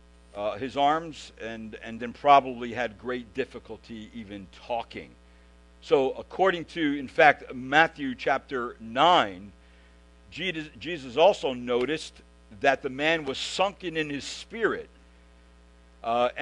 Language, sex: English, male